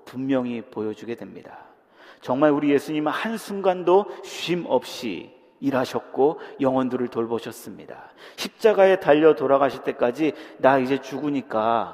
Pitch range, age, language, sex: 120-175 Hz, 40-59, Korean, male